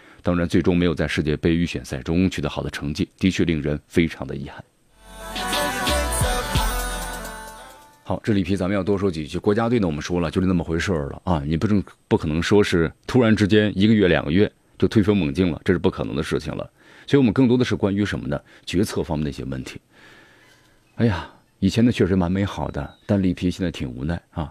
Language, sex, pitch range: Chinese, male, 80-110 Hz